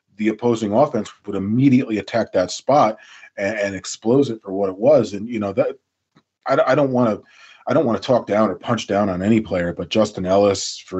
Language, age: English, 30-49